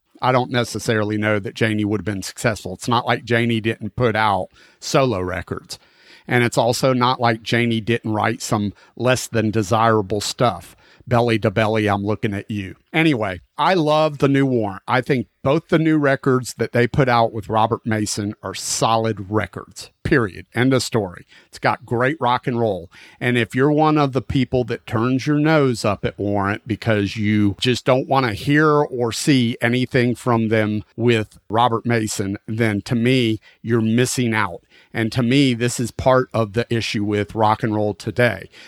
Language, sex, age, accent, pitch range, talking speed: English, male, 40-59, American, 105-125 Hz, 185 wpm